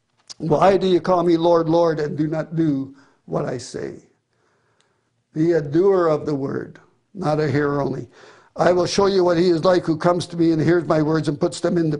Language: English